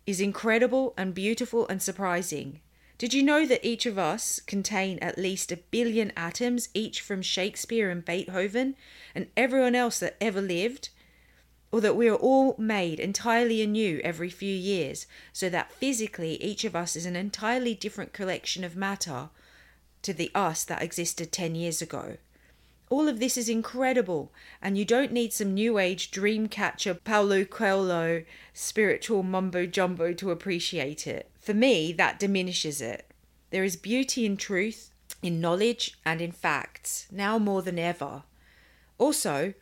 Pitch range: 165-215 Hz